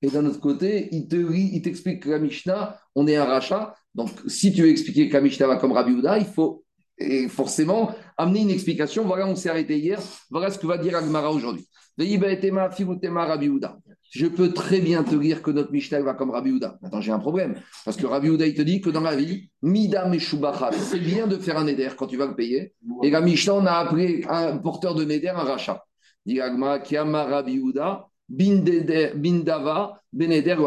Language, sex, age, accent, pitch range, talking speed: French, male, 40-59, French, 150-190 Hz, 210 wpm